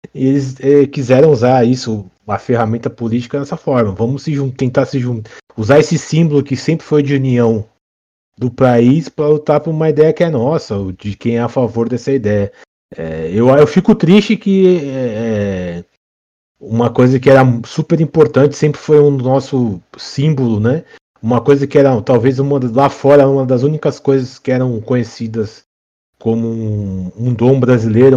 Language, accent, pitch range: Portuguese, Brazilian, 110-140 Hz